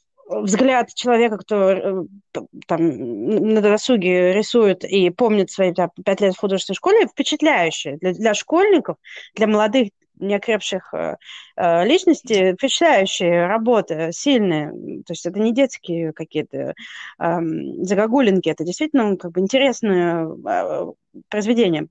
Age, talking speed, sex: 20-39, 100 wpm, female